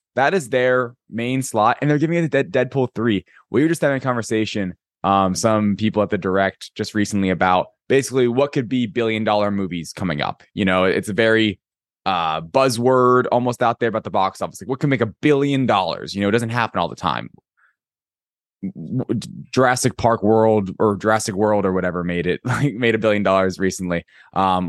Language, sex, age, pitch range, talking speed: English, male, 20-39, 105-130 Hz, 200 wpm